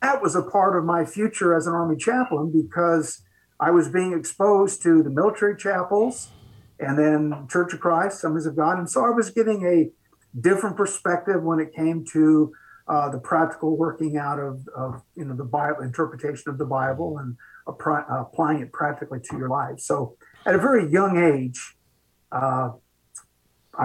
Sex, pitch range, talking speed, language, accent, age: male, 135-170 Hz, 175 wpm, English, American, 50-69